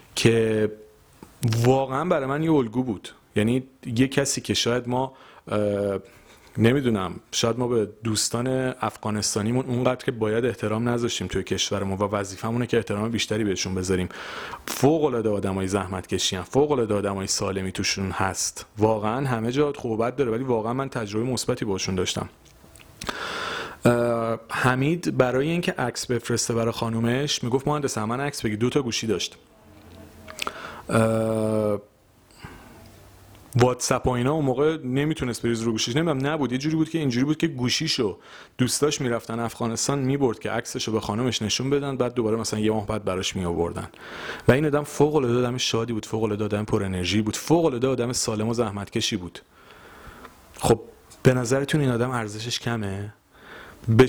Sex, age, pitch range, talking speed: male, 30-49, 105-130 Hz, 150 wpm